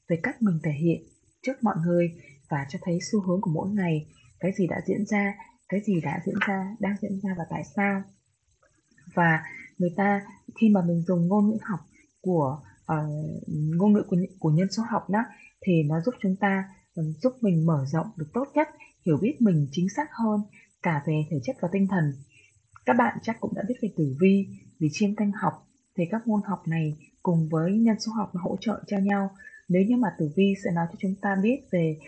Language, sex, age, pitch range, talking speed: Vietnamese, female, 20-39, 165-210 Hz, 215 wpm